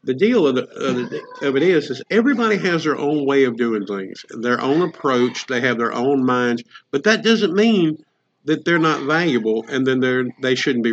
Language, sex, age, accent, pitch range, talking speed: English, male, 50-69, American, 135-210 Hz, 215 wpm